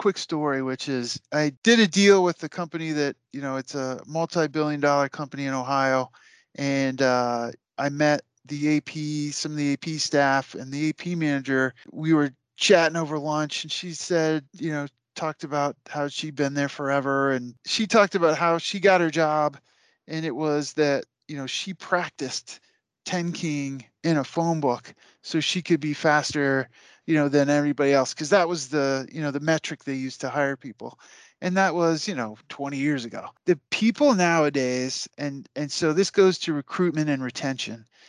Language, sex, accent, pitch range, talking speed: English, male, American, 135-160 Hz, 185 wpm